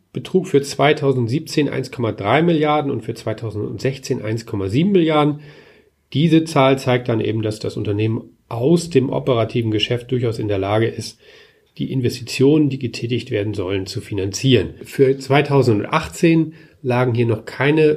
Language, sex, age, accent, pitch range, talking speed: German, male, 40-59, German, 125-165 Hz, 135 wpm